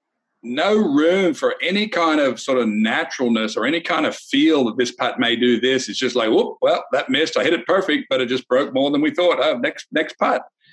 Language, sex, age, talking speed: English, male, 50-69, 235 wpm